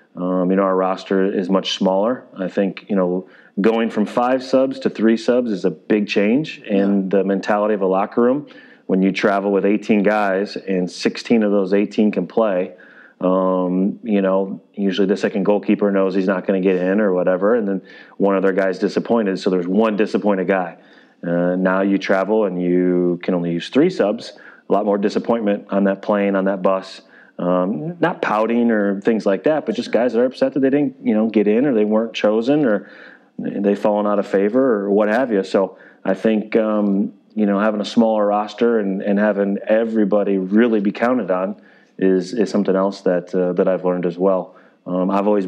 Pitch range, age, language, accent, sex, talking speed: 95-105 Hz, 30-49, English, American, male, 205 wpm